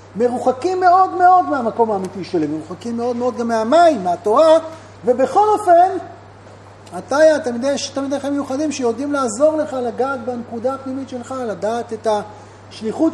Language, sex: Hebrew, male